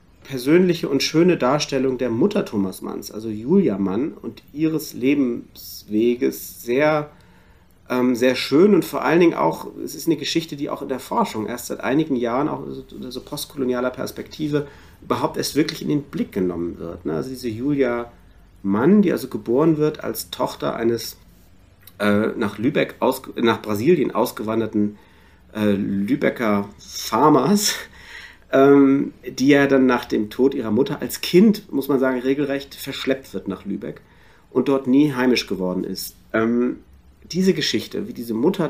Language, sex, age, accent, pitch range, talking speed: German, male, 40-59, German, 100-145 Hz, 155 wpm